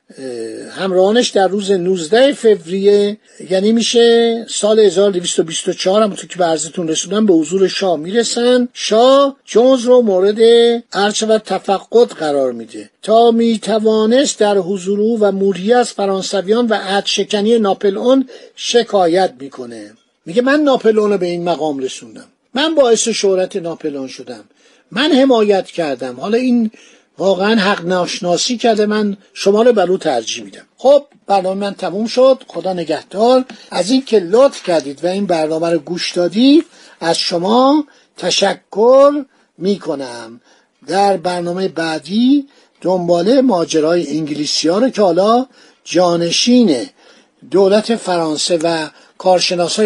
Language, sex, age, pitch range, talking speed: Persian, male, 50-69, 175-235 Hz, 125 wpm